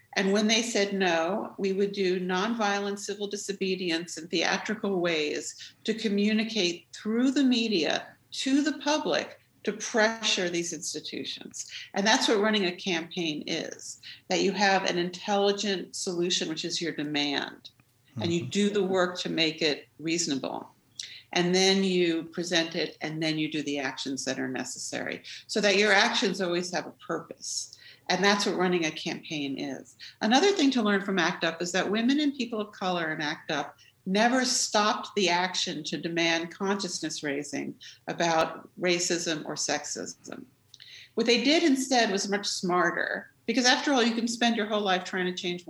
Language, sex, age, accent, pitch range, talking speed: English, female, 50-69, American, 165-215 Hz, 170 wpm